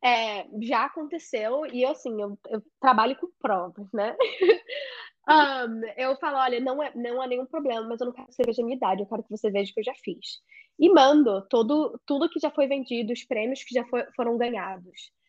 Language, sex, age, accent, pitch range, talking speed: Portuguese, female, 10-29, Brazilian, 220-275 Hz, 220 wpm